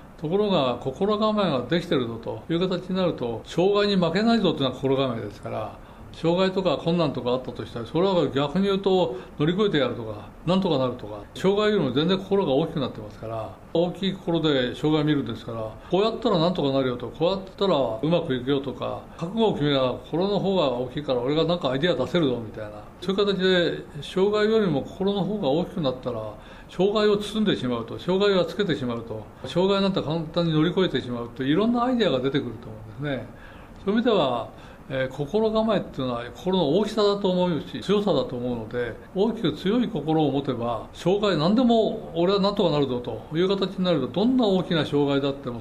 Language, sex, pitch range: Japanese, male, 125-190 Hz